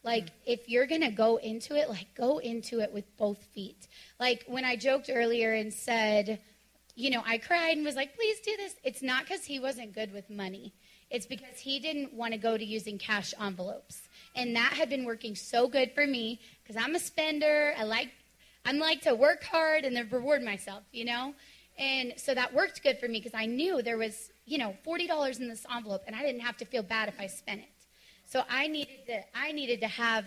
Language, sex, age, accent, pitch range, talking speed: English, female, 20-39, American, 215-270 Hz, 220 wpm